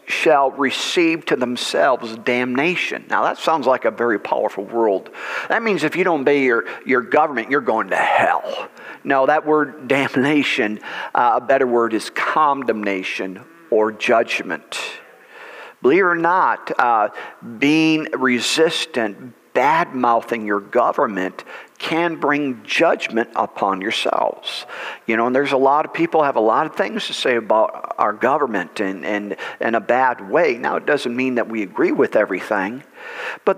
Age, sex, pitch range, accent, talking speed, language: 50-69, male, 115-150 Hz, American, 155 wpm, English